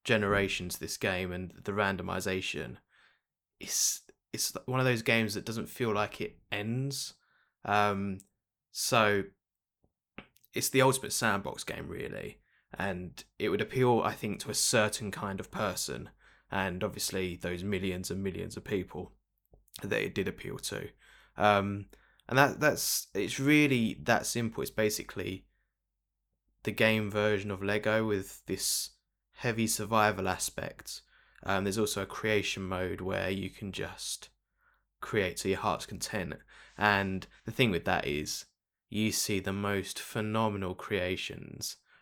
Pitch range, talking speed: 95-105 Hz, 140 wpm